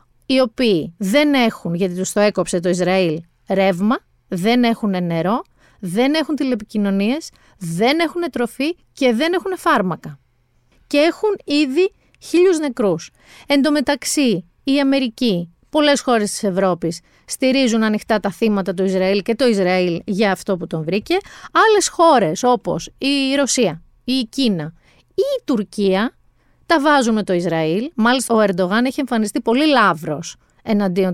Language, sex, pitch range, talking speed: Greek, female, 190-265 Hz, 135 wpm